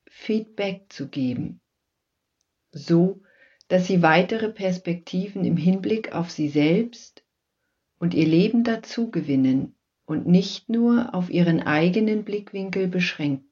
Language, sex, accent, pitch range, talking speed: German, female, German, 155-210 Hz, 110 wpm